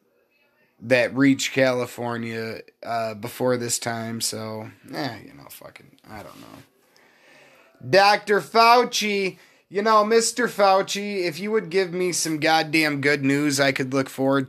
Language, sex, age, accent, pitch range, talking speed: English, male, 30-49, American, 140-220 Hz, 140 wpm